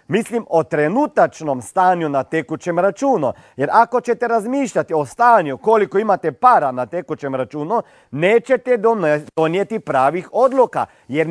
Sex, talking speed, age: male, 125 wpm, 40-59